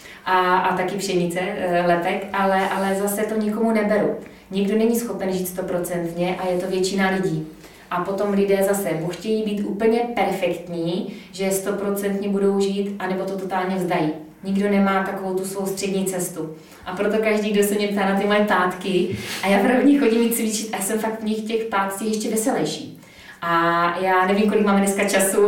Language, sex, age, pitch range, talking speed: Czech, female, 20-39, 185-205 Hz, 185 wpm